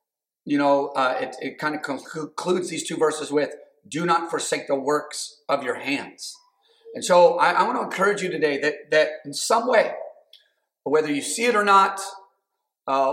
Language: English